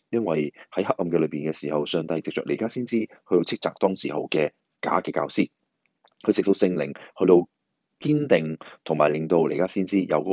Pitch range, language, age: 80-110 Hz, Chinese, 30-49